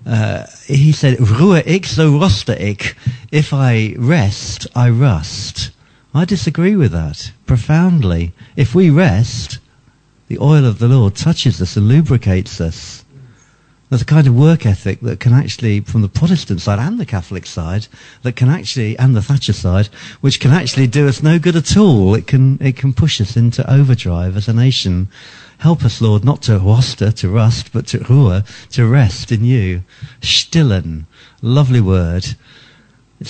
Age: 50-69